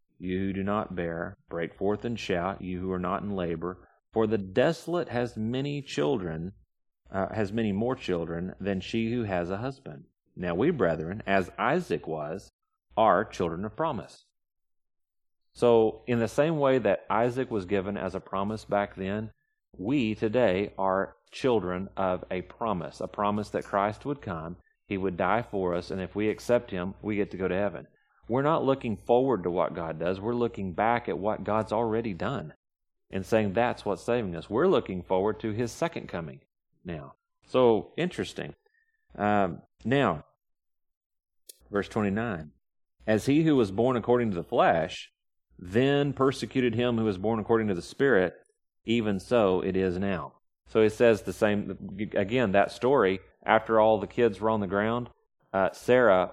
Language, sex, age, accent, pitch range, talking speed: English, male, 40-59, American, 95-120 Hz, 175 wpm